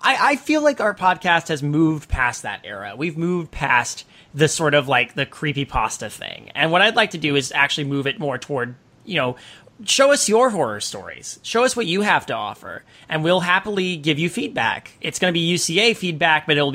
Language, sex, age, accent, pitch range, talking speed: English, male, 30-49, American, 140-185 Hz, 220 wpm